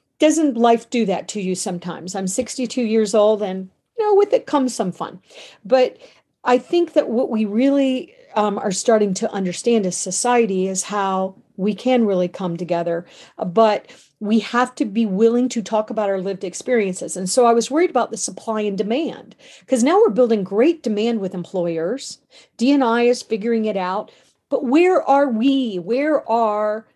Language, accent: English, American